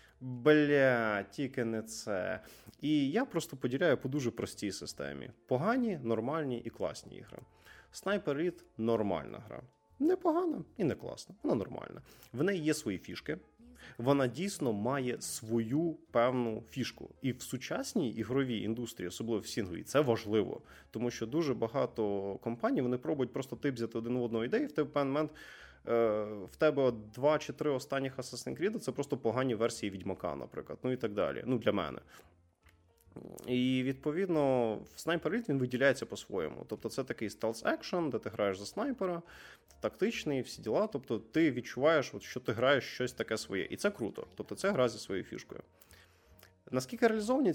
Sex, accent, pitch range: male, native, 110-150 Hz